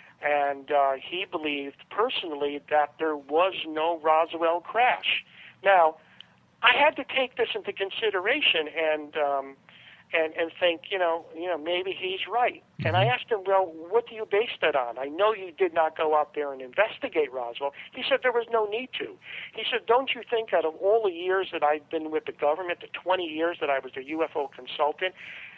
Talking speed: 200 wpm